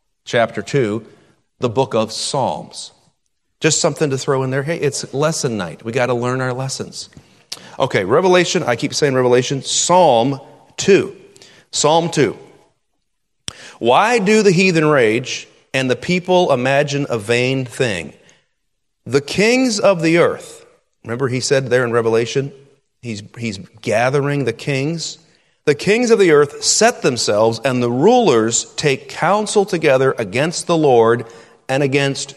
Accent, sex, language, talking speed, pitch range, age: American, male, English, 145 wpm, 125-165 Hz, 30-49